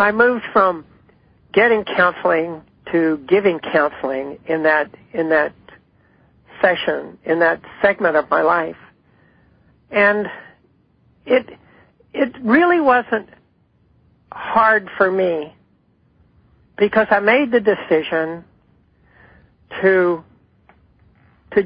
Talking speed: 95 wpm